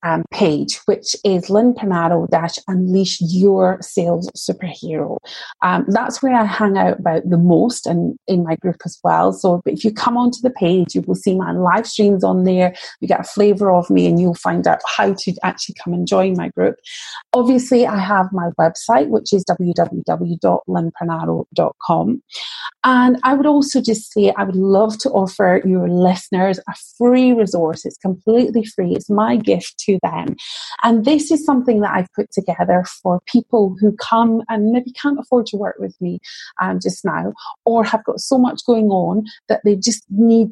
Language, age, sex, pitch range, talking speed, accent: English, 30-49, female, 180-230 Hz, 180 wpm, British